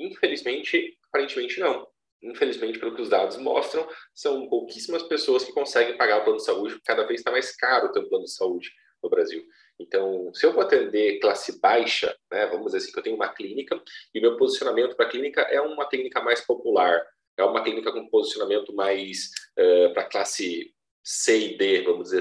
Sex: male